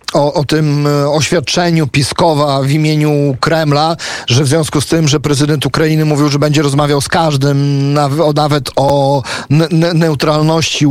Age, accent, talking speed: 40-59, native, 140 wpm